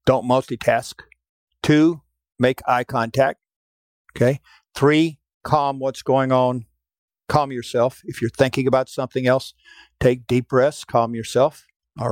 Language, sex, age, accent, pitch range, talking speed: English, male, 60-79, American, 115-135 Hz, 130 wpm